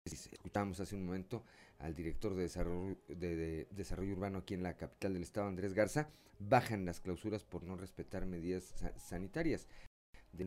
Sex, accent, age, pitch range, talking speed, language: male, Mexican, 40-59, 90-110 Hz, 170 wpm, Spanish